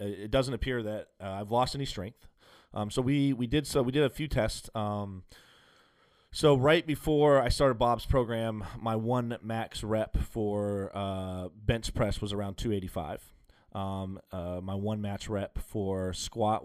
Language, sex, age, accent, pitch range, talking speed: English, male, 30-49, American, 95-120 Hz, 175 wpm